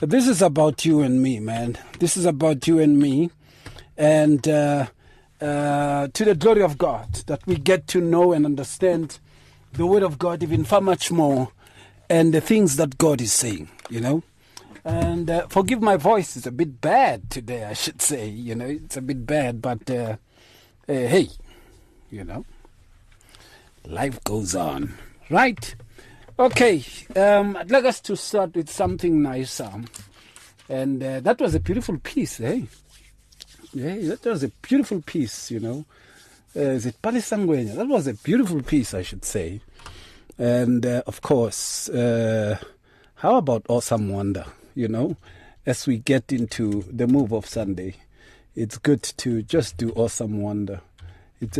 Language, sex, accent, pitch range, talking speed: English, male, South African, 115-165 Hz, 160 wpm